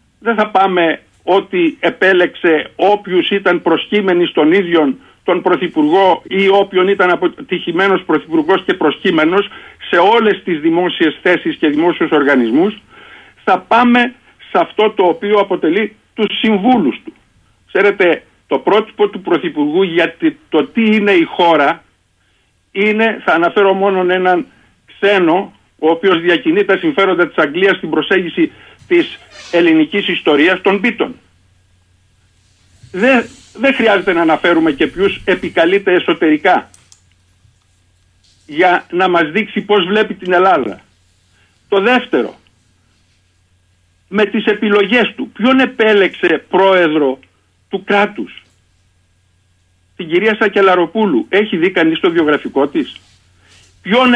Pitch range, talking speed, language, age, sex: 145-220 Hz, 115 wpm, Greek, 50-69, male